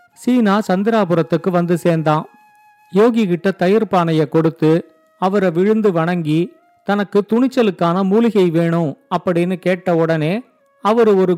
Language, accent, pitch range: Tamil, native, 175-220 Hz